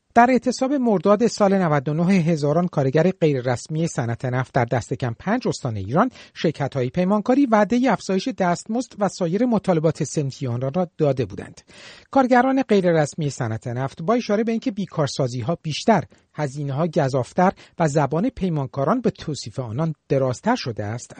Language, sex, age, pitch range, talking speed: Persian, male, 50-69, 150-210 Hz, 155 wpm